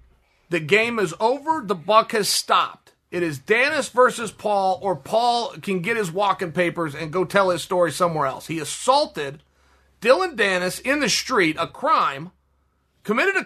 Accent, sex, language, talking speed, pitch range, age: American, male, English, 170 wpm, 190-265 Hz, 30-49